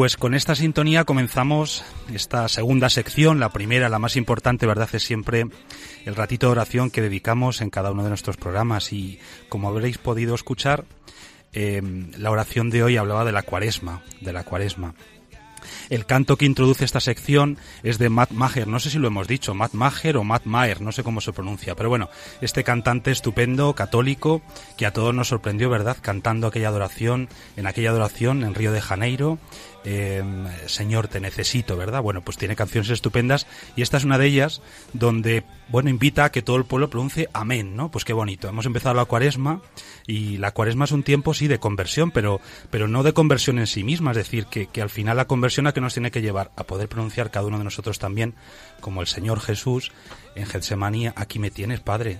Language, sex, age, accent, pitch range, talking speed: Spanish, male, 30-49, Spanish, 105-130 Hz, 200 wpm